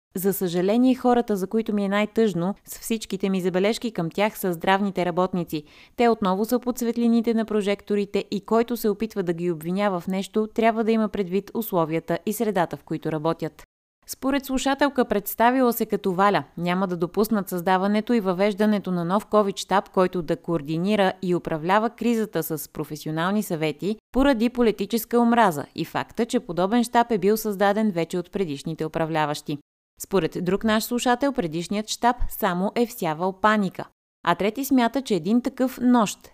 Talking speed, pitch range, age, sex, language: 165 wpm, 175-225 Hz, 20-39, female, Bulgarian